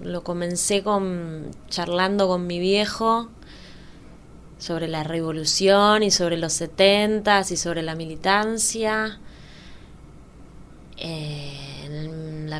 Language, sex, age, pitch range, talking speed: Spanish, female, 20-39, 165-200 Hz, 90 wpm